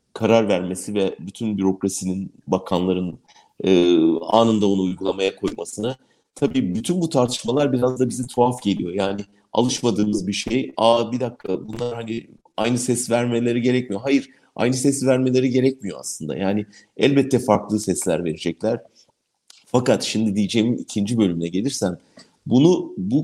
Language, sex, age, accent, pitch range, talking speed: German, male, 50-69, Turkish, 100-130 Hz, 130 wpm